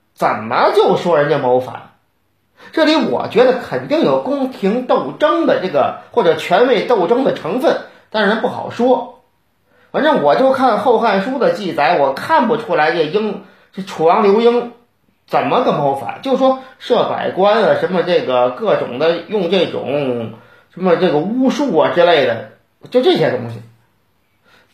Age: 40-59